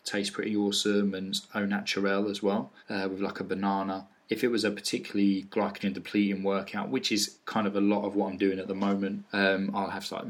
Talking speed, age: 220 wpm, 20-39